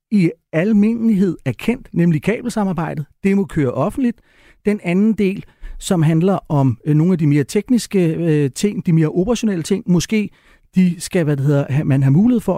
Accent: native